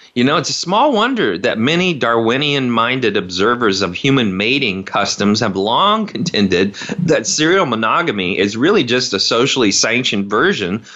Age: 30-49